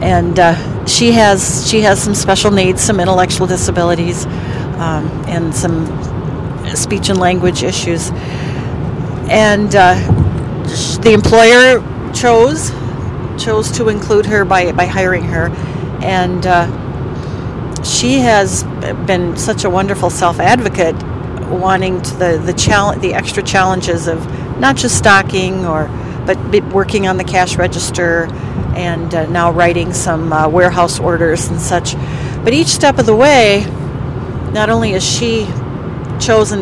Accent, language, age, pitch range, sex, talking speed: American, English, 40-59, 135-185 Hz, female, 135 wpm